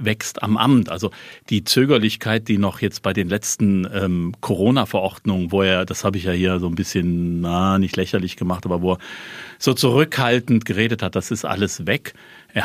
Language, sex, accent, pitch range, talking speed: German, male, German, 95-115 Hz, 190 wpm